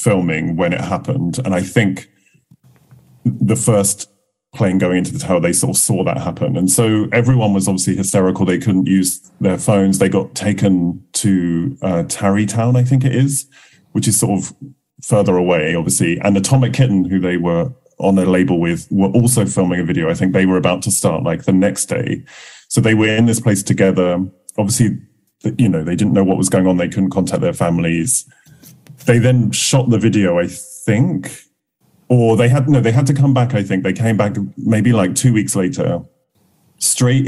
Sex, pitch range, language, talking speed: male, 95-120 Hz, English, 200 wpm